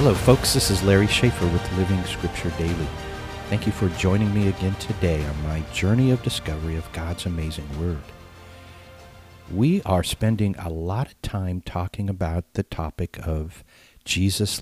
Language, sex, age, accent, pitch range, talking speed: English, male, 50-69, American, 85-110 Hz, 160 wpm